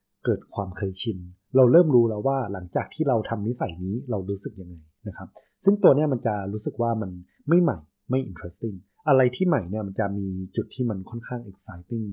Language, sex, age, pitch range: Thai, male, 20-39, 100-130 Hz